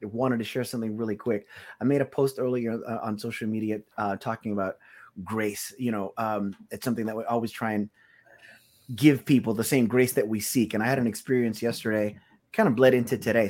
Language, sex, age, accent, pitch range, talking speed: English, male, 30-49, American, 110-135 Hz, 215 wpm